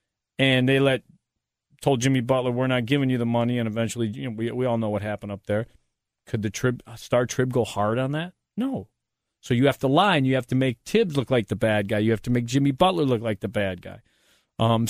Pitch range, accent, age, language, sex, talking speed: 110-130 Hz, American, 40-59, English, male, 250 wpm